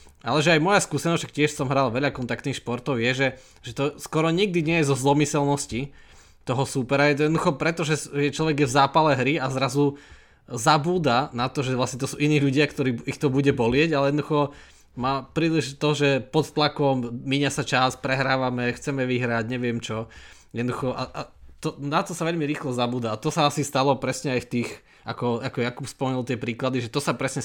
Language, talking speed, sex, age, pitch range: Slovak, 200 wpm, male, 20-39, 120-145 Hz